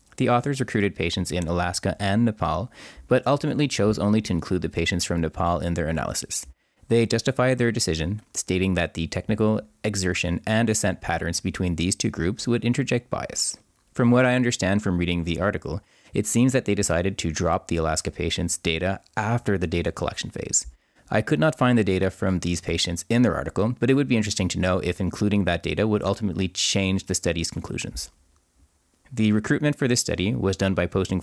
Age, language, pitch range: 30-49, English, 85-115 Hz